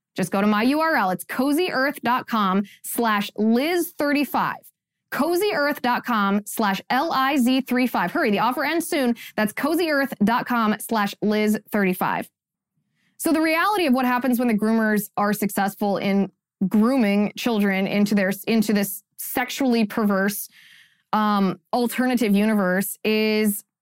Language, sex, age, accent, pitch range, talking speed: English, female, 20-39, American, 200-260 Hz, 115 wpm